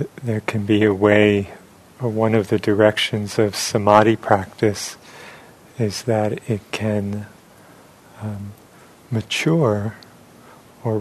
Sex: male